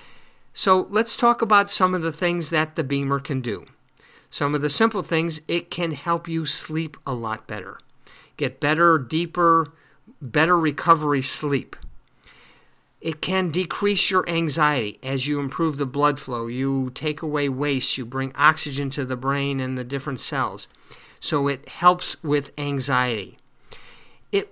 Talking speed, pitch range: 155 wpm, 140-170 Hz